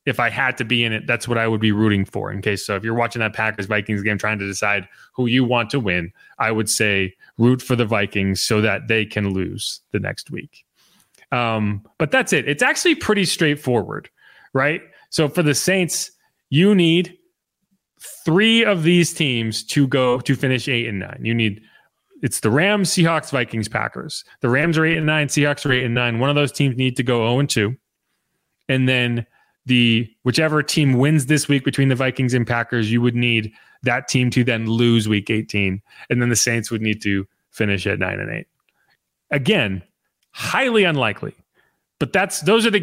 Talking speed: 200 wpm